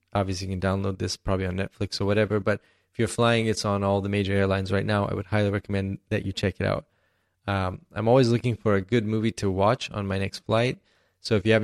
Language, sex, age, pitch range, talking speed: English, male, 20-39, 100-110 Hz, 255 wpm